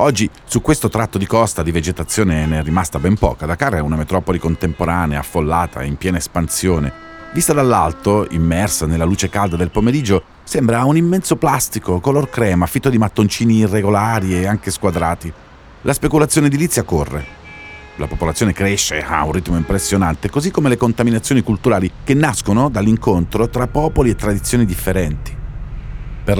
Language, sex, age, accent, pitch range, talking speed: Italian, male, 40-59, native, 85-120 Hz, 155 wpm